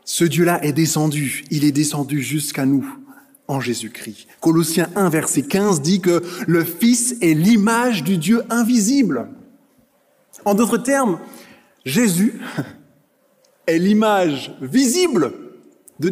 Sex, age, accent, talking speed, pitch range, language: male, 20-39, French, 120 wpm, 150-235 Hz, French